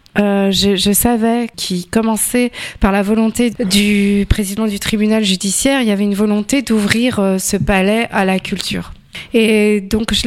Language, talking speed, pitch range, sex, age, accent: French, 165 wpm, 195-235 Hz, female, 20-39, French